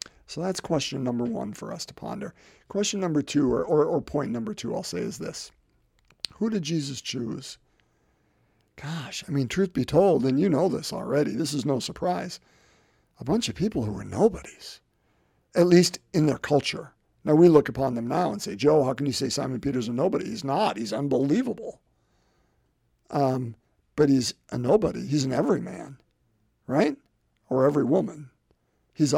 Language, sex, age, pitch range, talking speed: English, male, 50-69, 140-190 Hz, 180 wpm